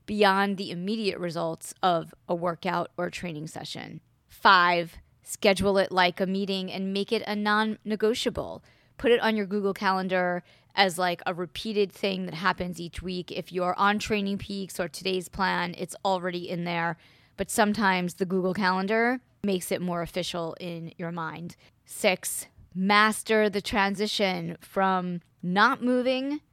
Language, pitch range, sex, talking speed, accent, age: English, 175-205 Hz, female, 150 wpm, American, 20-39